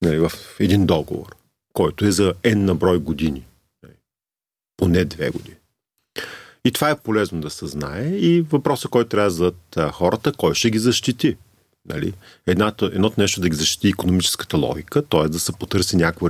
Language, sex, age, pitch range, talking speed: Bulgarian, male, 40-59, 90-140 Hz, 155 wpm